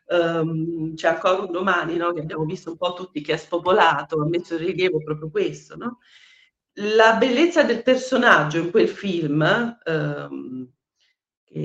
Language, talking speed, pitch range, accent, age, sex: Italian, 160 wpm, 165-275 Hz, native, 40-59, female